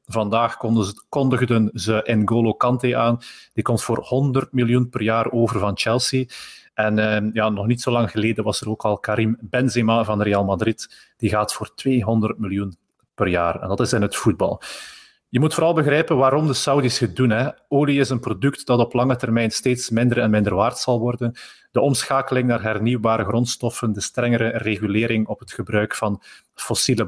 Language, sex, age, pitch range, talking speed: Dutch, male, 30-49, 110-130 Hz, 180 wpm